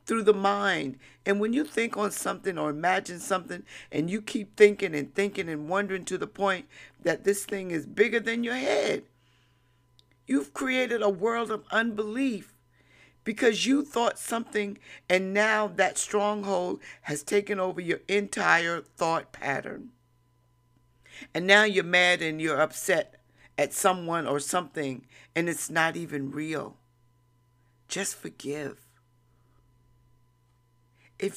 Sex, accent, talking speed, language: female, American, 135 wpm, English